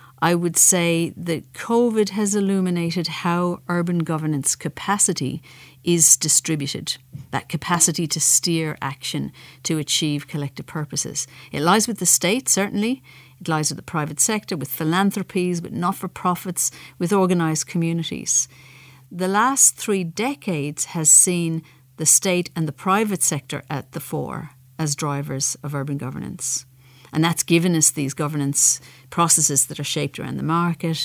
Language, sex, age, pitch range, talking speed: English, female, 50-69, 140-180 Hz, 145 wpm